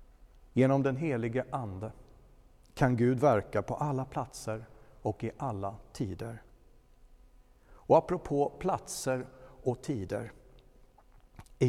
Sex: male